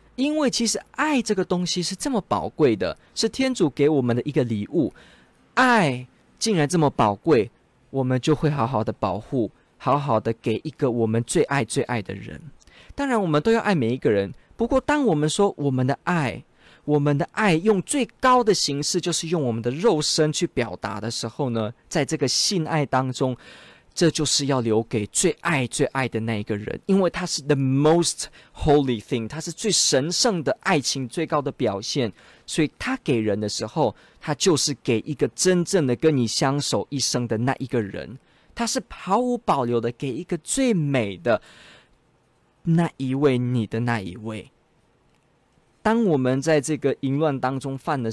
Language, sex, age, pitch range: Chinese, male, 20-39, 120-170 Hz